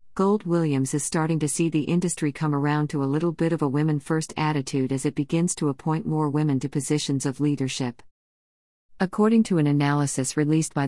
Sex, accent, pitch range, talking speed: female, American, 140-160 Hz, 200 wpm